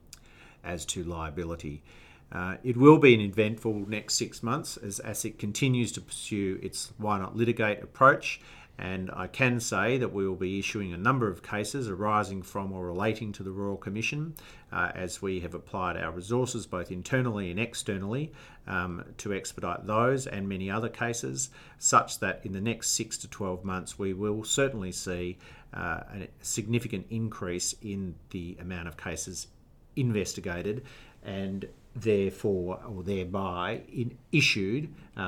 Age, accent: 50-69, Australian